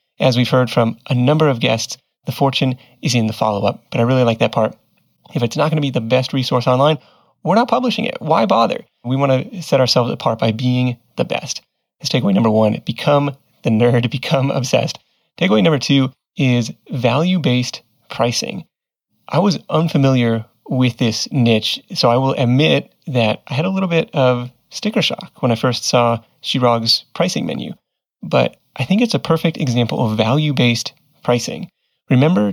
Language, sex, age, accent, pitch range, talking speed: English, male, 30-49, American, 120-160 Hz, 185 wpm